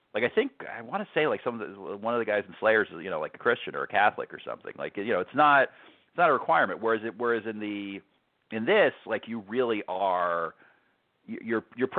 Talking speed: 250 wpm